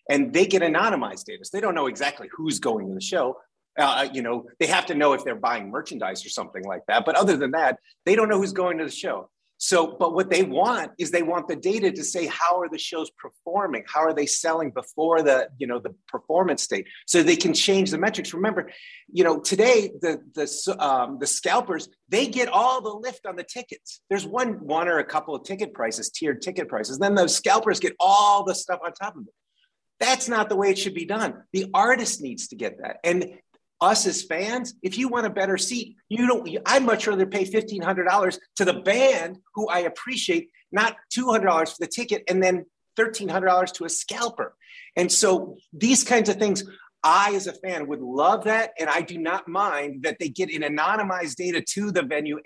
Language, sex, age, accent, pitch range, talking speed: English, male, 30-49, American, 175-230 Hz, 225 wpm